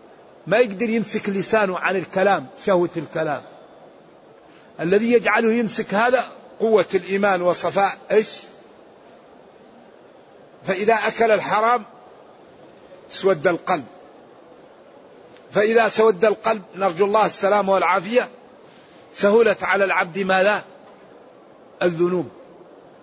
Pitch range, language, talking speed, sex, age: 175-215 Hz, Arabic, 85 wpm, male, 50-69